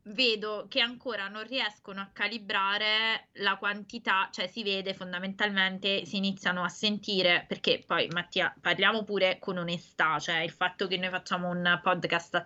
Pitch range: 170-220 Hz